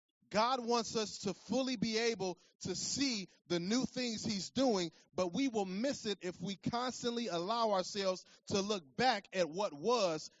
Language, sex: English, male